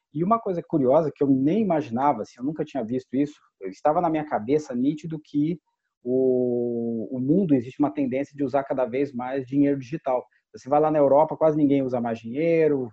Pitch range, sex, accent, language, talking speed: 125-150 Hz, male, Brazilian, Portuguese, 195 wpm